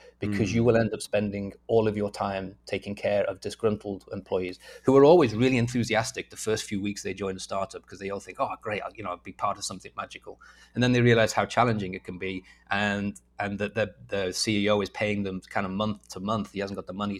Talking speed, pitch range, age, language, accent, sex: 250 wpm, 95-110 Hz, 30-49, English, British, male